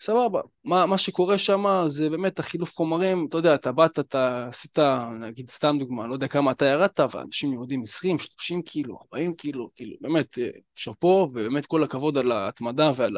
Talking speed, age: 180 wpm, 20-39